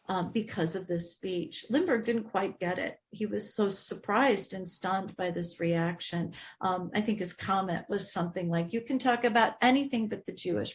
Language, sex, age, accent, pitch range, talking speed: English, female, 40-59, American, 185-240 Hz, 195 wpm